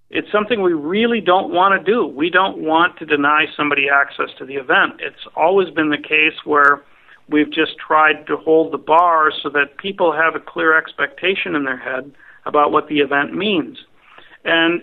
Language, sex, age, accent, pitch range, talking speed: English, male, 50-69, American, 145-170 Hz, 190 wpm